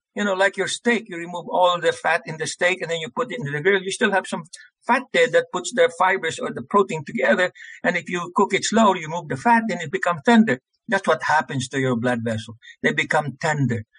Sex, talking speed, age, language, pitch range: male, 255 wpm, 60-79, English, 155-230 Hz